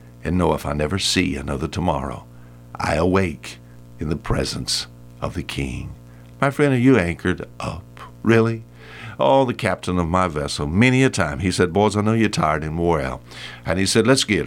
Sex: male